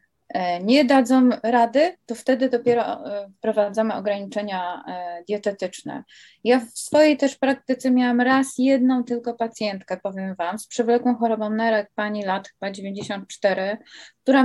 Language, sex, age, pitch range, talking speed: Polish, female, 20-39, 210-255 Hz, 125 wpm